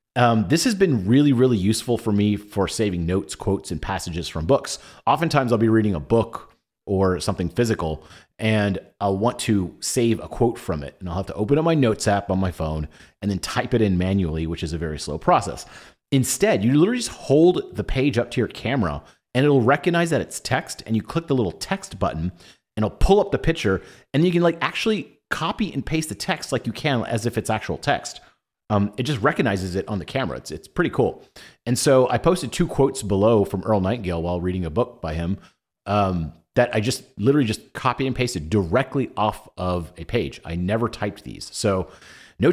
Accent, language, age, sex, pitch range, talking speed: American, English, 30-49, male, 95-135 Hz, 220 wpm